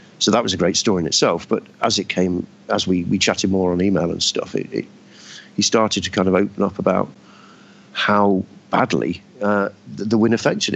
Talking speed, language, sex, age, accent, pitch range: 210 wpm, English, male, 50-69, British, 95-115 Hz